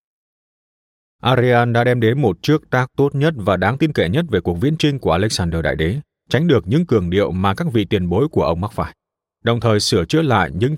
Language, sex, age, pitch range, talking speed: Vietnamese, male, 20-39, 85-125 Hz, 235 wpm